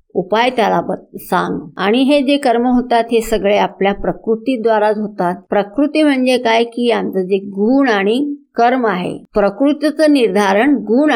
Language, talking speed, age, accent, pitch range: Hindi, 125 wpm, 50-69, native, 200-270 Hz